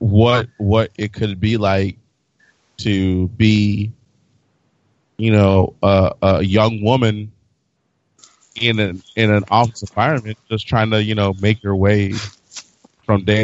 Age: 30-49